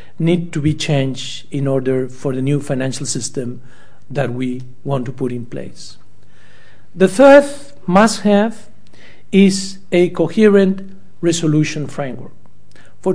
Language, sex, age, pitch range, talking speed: English, male, 50-69, 130-185 Hz, 125 wpm